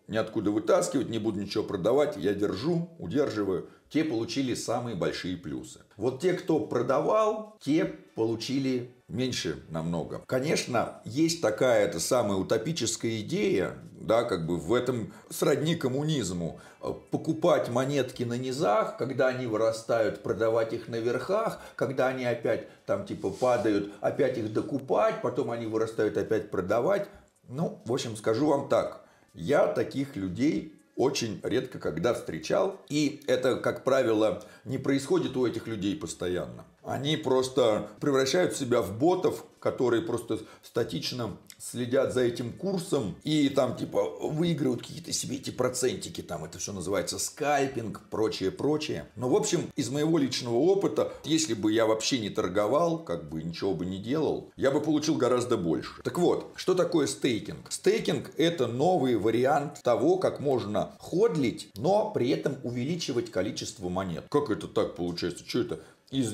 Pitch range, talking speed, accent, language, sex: 110-150 Hz, 145 wpm, native, Russian, male